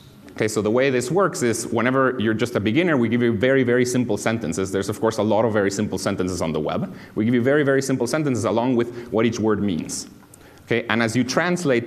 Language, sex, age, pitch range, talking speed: Russian, male, 30-49, 100-130 Hz, 250 wpm